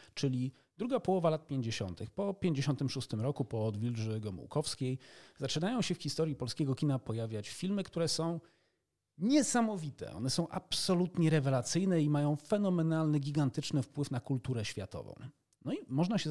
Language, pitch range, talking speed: Polish, 120-160 Hz, 140 wpm